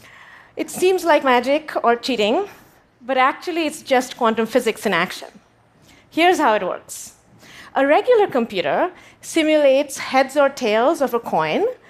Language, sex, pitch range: Korean, female, 220-305 Hz